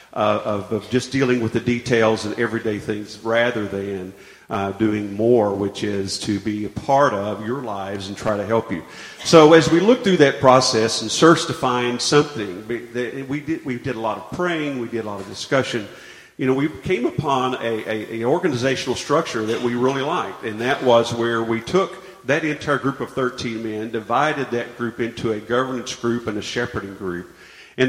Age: 50-69